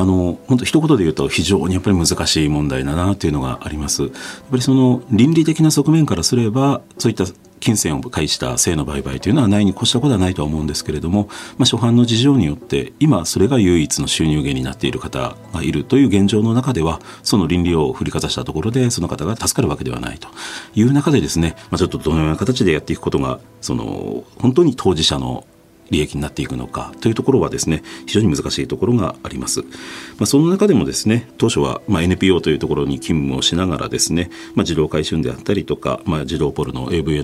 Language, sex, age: Japanese, male, 40-59